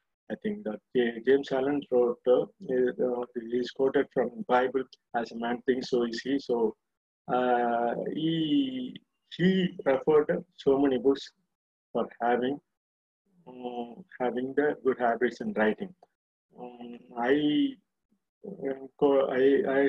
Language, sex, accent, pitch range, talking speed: Tamil, male, native, 120-145 Hz, 125 wpm